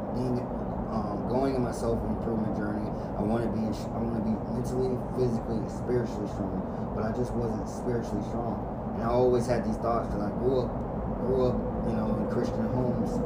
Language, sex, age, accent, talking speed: English, male, 20-39, American, 195 wpm